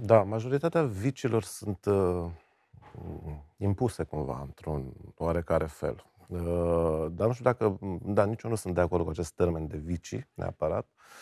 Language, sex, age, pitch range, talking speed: Romanian, male, 30-49, 90-120 Hz, 150 wpm